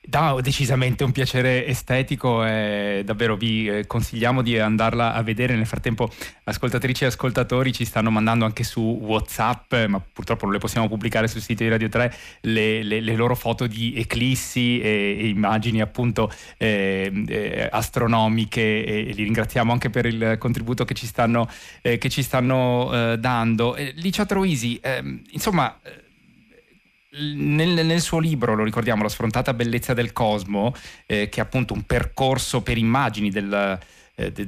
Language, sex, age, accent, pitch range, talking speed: Italian, male, 20-39, native, 110-130 Hz, 165 wpm